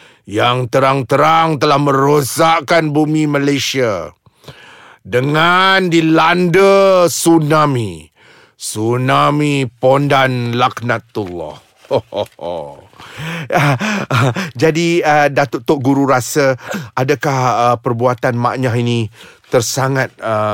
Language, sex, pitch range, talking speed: Malay, male, 130-175 Hz, 80 wpm